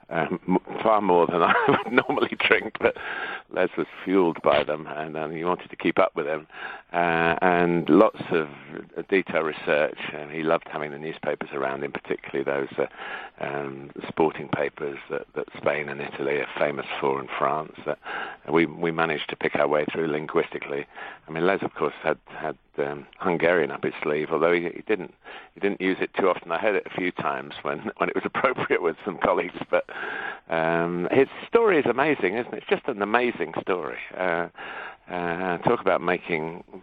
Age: 50-69